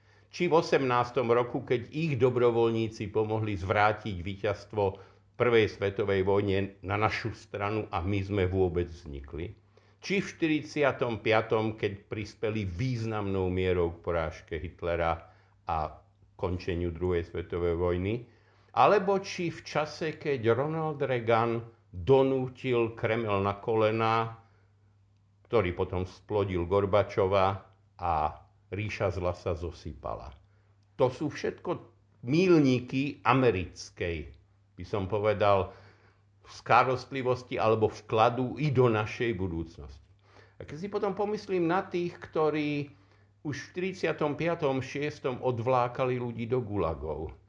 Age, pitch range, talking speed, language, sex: 50-69, 95-125 Hz, 110 wpm, Slovak, male